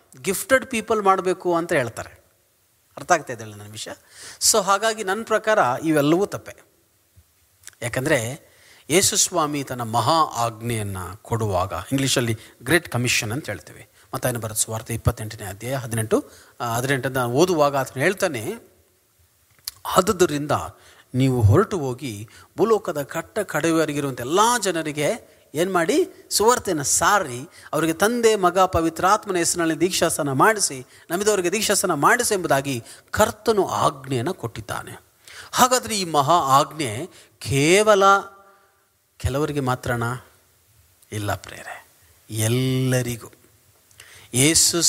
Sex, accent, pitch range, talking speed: male, native, 115-175 Hz, 100 wpm